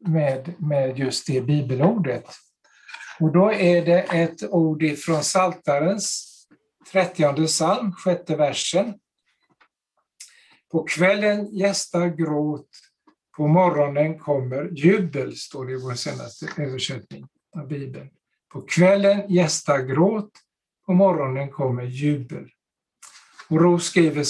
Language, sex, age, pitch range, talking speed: Swedish, male, 60-79, 150-190 Hz, 110 wpm